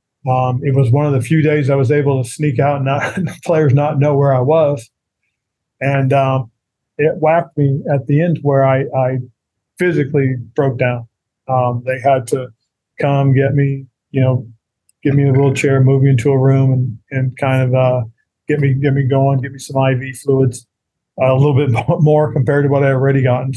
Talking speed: 210 wpm